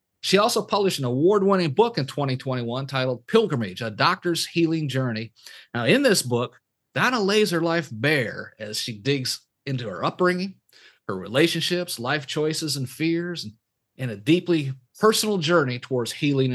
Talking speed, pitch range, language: 150 wpm, 130-180 Hz, English